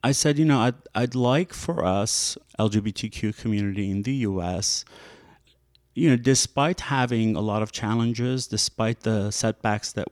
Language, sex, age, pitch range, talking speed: English, male, 30-49, 100-130 Hz, 155 wpm